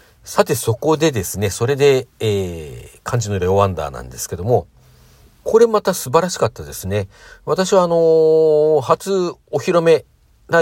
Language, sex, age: Japanese, male, 50-69